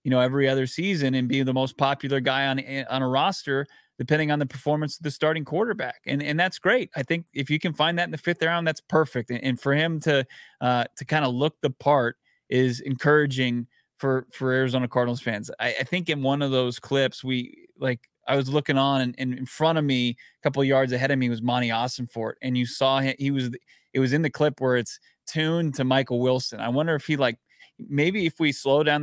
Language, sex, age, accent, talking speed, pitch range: English, male, 20-39, American, 245 wpm, 125-150 Hz